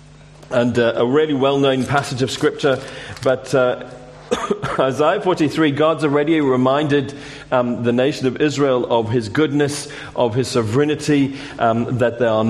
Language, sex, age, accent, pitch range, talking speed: English, male, 40-59, British, 120-150 Hz, 145 wpm